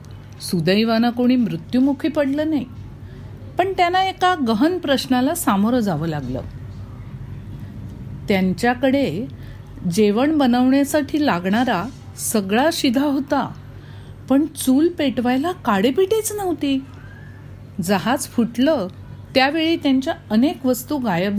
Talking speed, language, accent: 95 wpm, Marathi, native